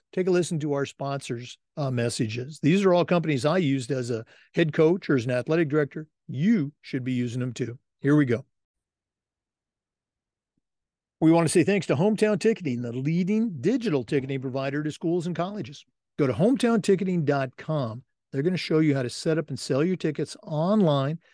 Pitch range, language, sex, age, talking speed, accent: 130-175 Hz, English, male, 50-69, 185 wpm, American